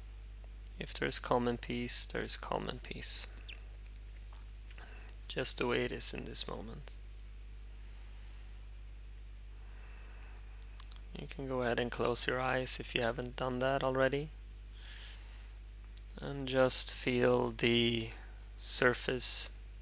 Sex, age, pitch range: male, 20-39, 105-115 Hz